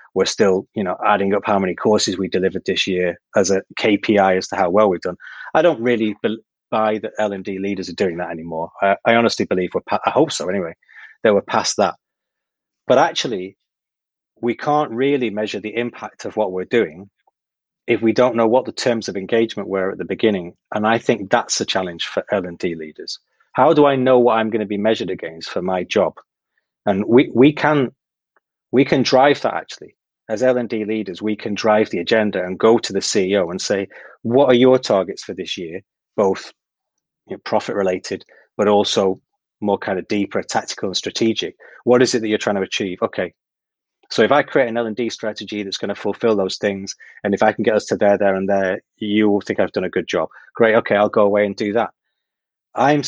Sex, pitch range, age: male, 100-115 Hz, 30-49